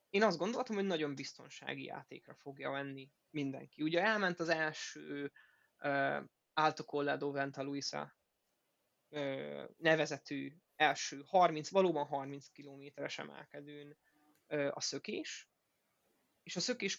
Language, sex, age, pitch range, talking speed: Hungarian, male, 20-39, 145-175 Hz, 110 wpm